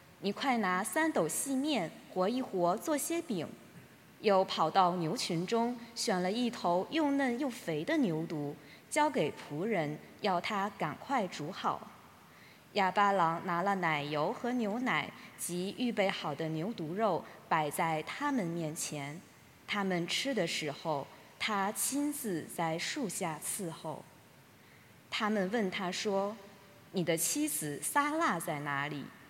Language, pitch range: English, 165-230 Hz